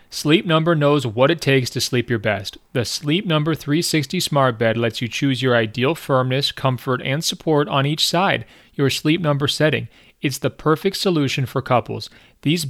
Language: English